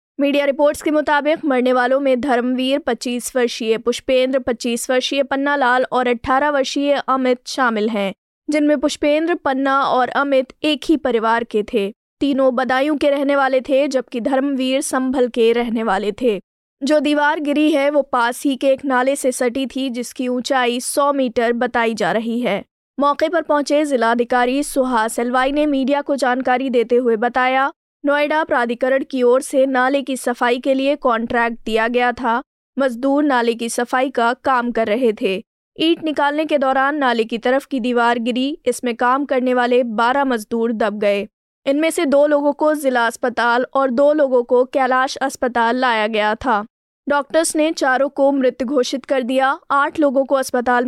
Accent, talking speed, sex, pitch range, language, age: native, 170 wpm, female, 245-280 Hz, Hindi, 20-39